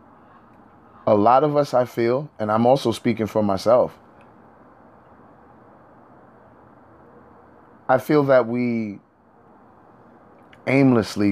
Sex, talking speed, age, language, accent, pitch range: male, 90 wpm, 30-49, English, American, 95-115 Hz